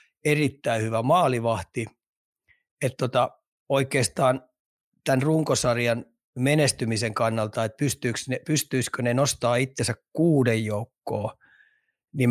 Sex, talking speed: male, 95 wpm